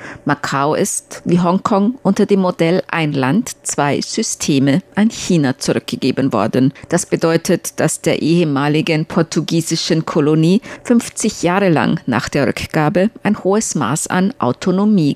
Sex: female